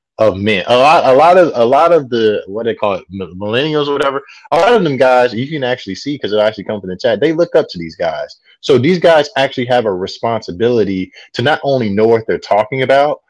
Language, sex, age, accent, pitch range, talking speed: English, male, 30-49, American, 100-130 Hz, 250 wpm